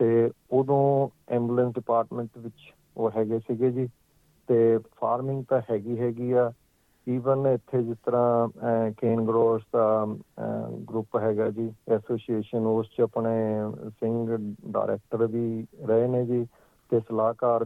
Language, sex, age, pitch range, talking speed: Punjabi, male, 50-69, 110-120 Hz, 120 wpm